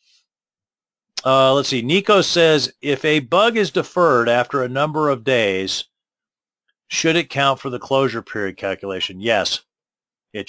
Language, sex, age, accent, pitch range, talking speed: English, male, 40-59, American, 110-140 Hz, 145 wpm